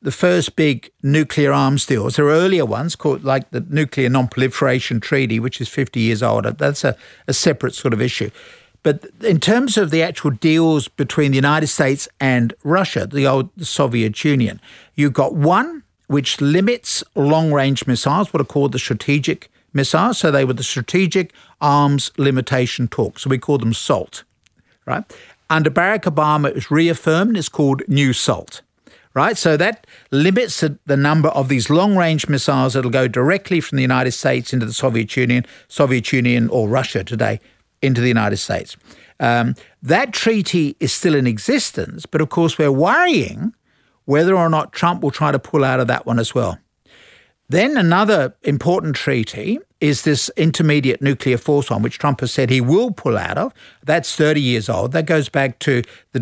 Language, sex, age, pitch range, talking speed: English, male, 50-69, 125-160 Hz, 180 wpm